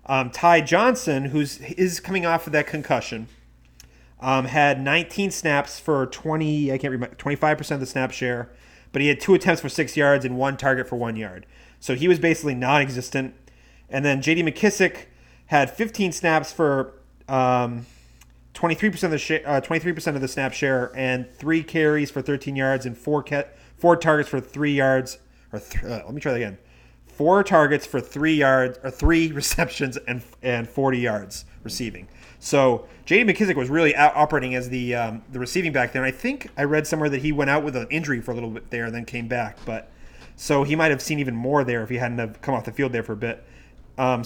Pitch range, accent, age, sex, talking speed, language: 120-155 Hz, American, 30-49, male, 215 wpm, English